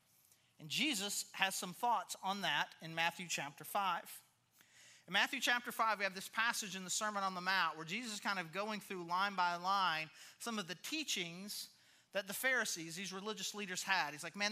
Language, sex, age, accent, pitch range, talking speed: English, male, 30-49, American, 170-220 Hz, 200 wpm